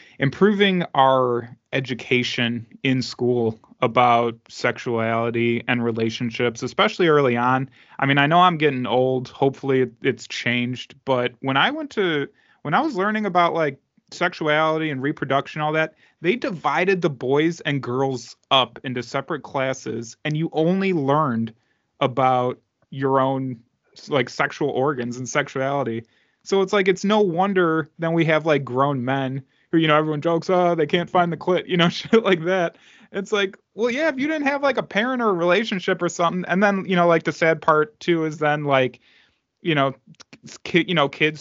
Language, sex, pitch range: English, male, 130-170 Hz